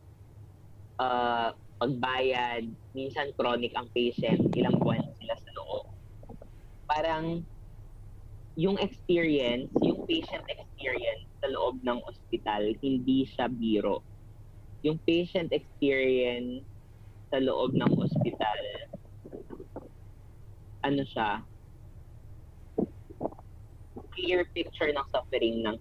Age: 20-39